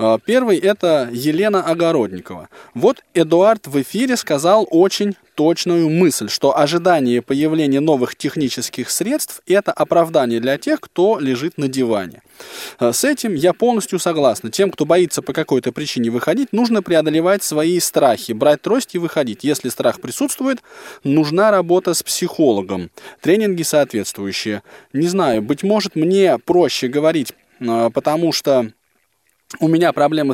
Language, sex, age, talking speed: Russian, male, 20-39, 135 wpm